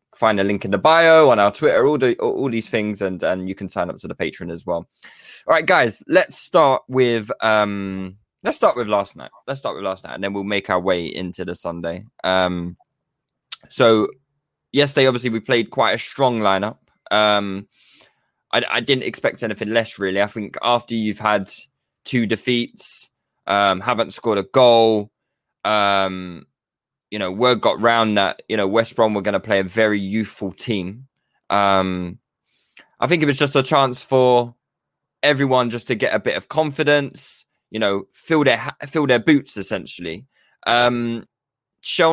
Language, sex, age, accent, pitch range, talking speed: English, male, 20-39, British, 100-140 Hz, 180 wpm